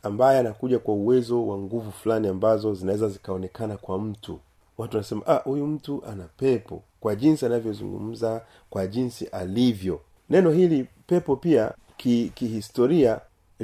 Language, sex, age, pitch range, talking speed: Swahili, male, 40-59, 115-155 Hz, 135 wpm